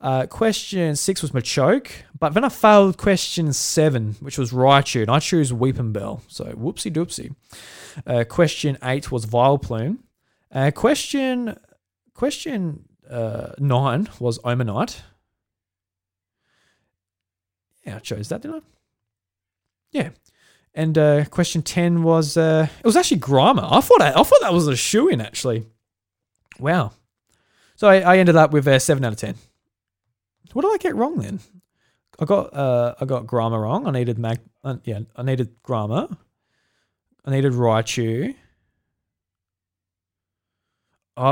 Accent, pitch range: Australian, 110-165 Hz